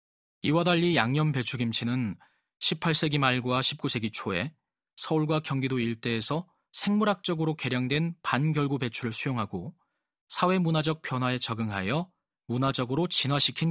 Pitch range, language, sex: 115-155 Hz, Korean, male